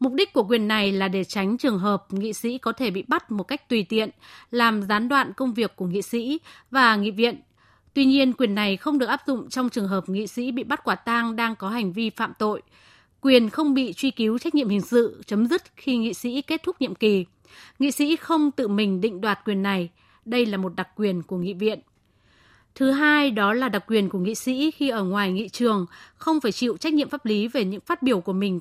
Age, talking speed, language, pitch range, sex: 20-39, 245 wpm, Vietnamese, 210-270 Hz, female